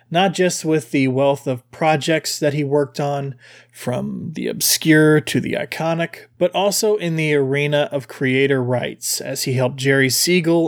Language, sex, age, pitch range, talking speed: English, male, 30-49, 135-165 Hz, 170 wpm